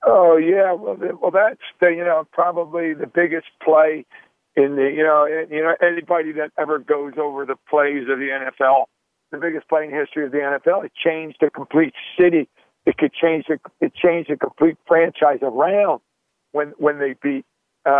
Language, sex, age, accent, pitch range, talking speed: English, male, 50-69, American, 155-175 Hz, 185 wpm